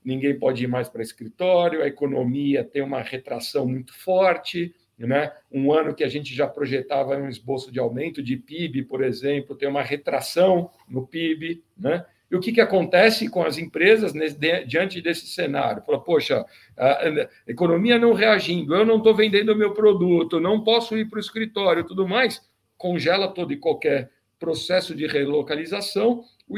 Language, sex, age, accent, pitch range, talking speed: Portuguese, male, 60-79, Brazilian, 135-190 Hz, 170 wpm